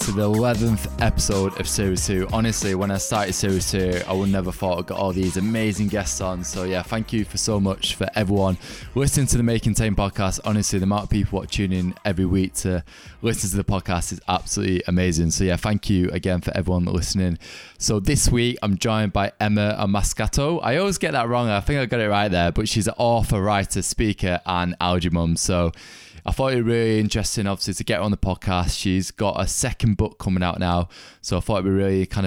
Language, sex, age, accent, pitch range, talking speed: English, male, 20-39, British, 90-105 Hz, 230 wpm